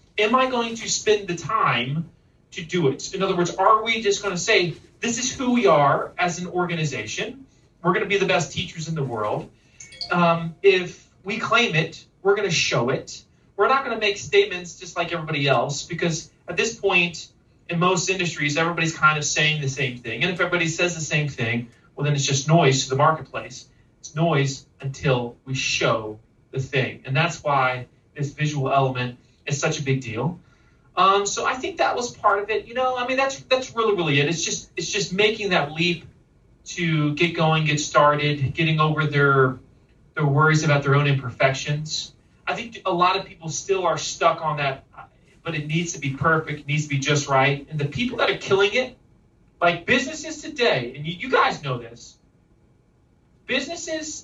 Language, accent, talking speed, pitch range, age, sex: English, American, 200 wpm, 140-190 Hz, 30-49, male